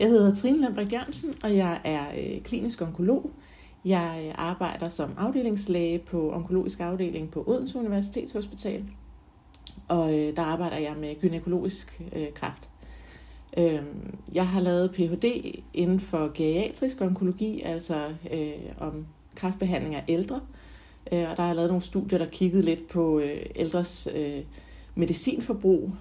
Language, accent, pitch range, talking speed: Danish, native, 155-195 Hz, 125 wpm